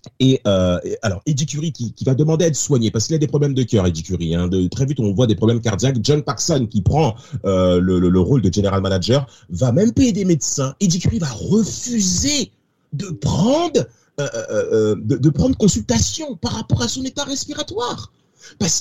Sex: male